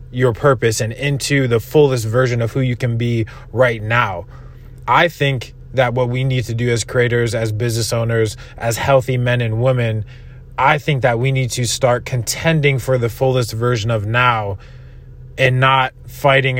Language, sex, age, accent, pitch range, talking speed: English, male, 20-39, American, 115-130 Hz, 175 wpm